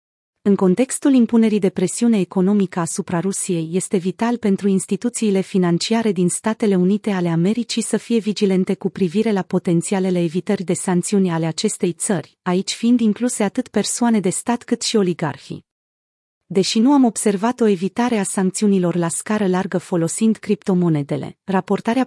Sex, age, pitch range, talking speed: female, 30-49, 180-220 Hz, 150 wpm